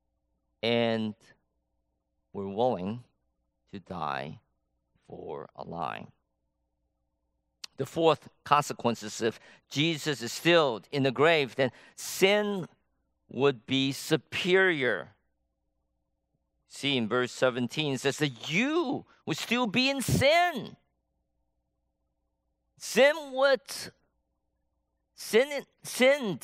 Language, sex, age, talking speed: English, male, 50-69, 90 wpm